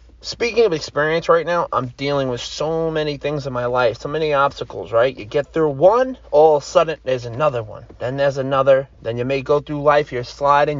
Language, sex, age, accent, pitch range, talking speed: English, male, 30-49, American, 115-145 Hz, 220 wpm